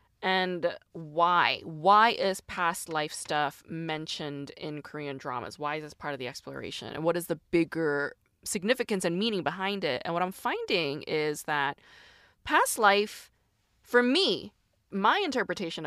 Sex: female